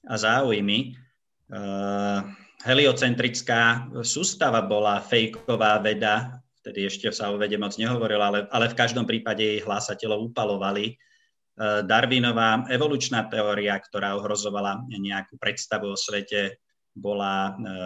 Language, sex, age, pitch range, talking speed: Slovak, male, 20-39, 100-120 Hz, 115 wpm